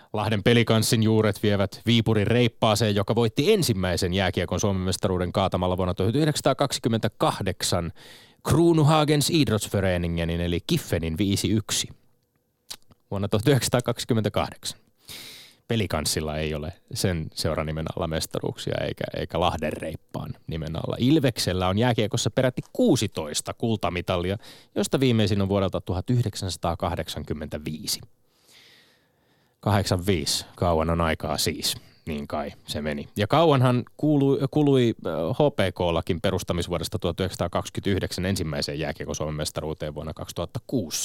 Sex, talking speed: male, 100 wpm